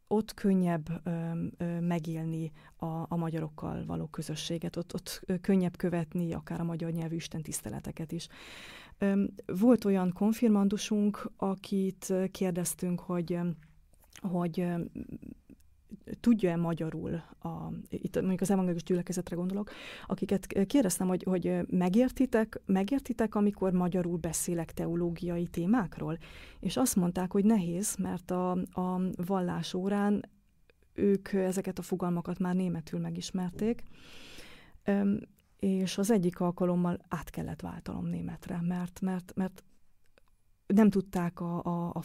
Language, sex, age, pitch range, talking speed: Hungarian, female, 30-49, 170-195 Hz, 115 wpm